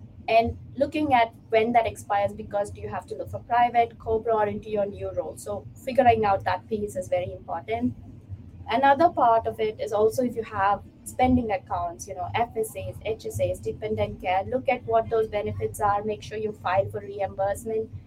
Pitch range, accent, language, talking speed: 190-235 Hz, Indian, English, 190 wpm